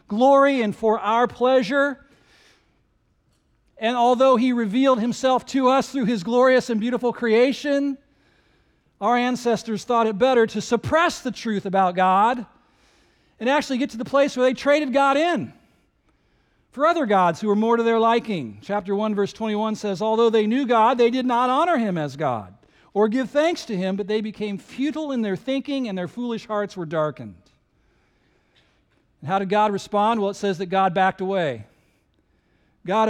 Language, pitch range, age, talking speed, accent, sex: English, 195-255 Hz, 50-69, 170 wpm, American, male